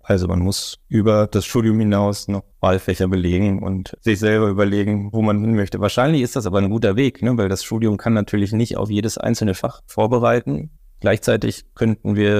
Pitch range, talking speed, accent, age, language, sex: 95-115 Hz, 195 wpm, German, 20-39, German, male